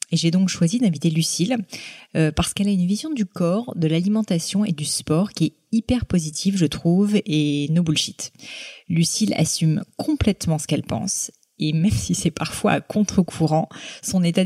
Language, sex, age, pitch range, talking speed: French, female, 20-39, 155-190 Hz, 175 wpm